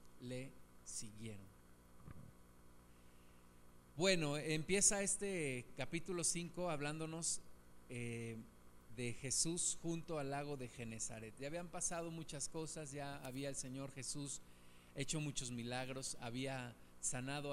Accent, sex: Mexican, male